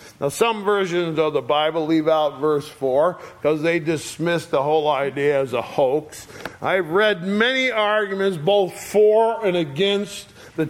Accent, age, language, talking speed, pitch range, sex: American, 50-69, English, 155 wpm, 155-195 Hz, male